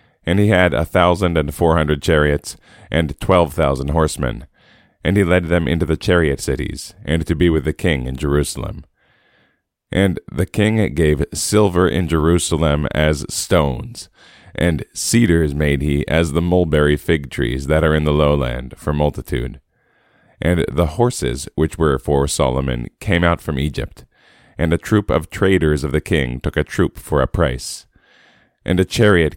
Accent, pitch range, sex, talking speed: American, 70-85 Hz, male, 170 wpm